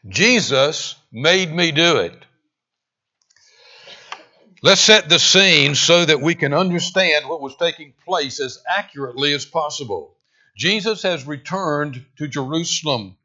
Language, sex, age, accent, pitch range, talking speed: English, male, 60-79, American, 140-180 Hz, 120 wpm